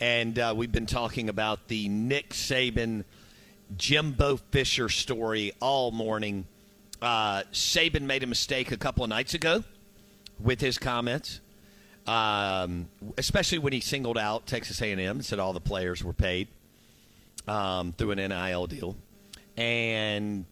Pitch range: 100-120 Hz